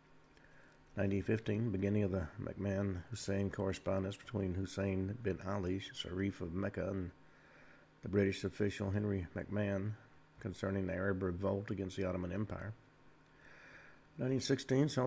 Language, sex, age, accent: English, male, 50-69, American